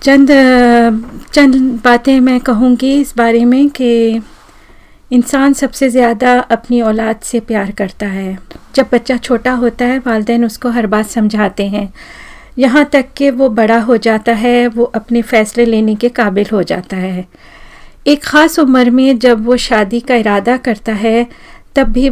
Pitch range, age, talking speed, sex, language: 220-250 Hz, 40-59, 160 wpm, female, Hindi